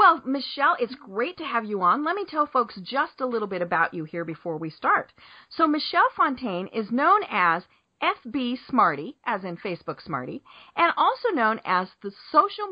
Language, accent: English, American